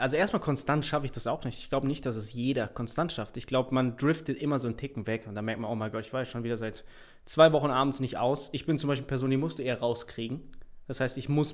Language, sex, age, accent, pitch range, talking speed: German, male, 20-39, German, 120-145 Hz, 295 wpm